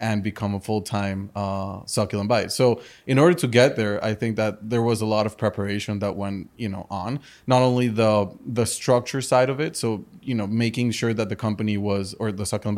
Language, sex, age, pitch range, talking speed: English, male, 20-39, 105-115 Hz, 220 wpm